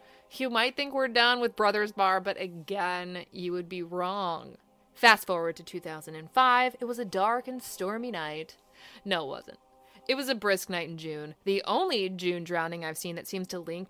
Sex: female